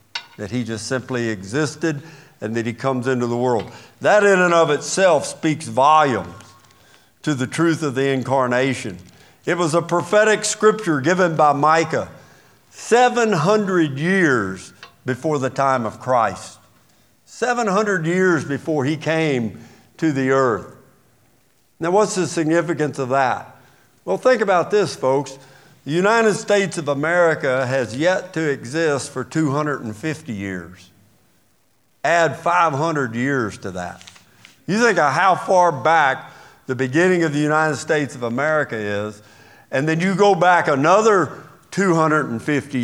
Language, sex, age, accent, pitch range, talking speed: English, male, 60-79, American, 115-165 Hz, 135 wpm